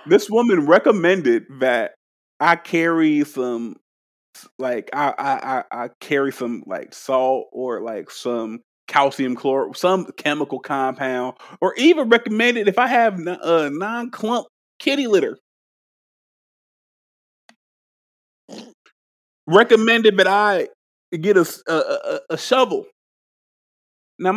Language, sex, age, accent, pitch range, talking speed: English, male, 30-49, American, 150-240 Hz, 105 wpm